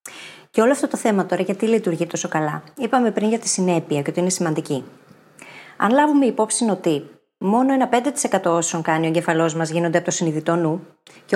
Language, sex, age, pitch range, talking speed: Greek, female, 30-49, 170-245 Hz, 195 wpm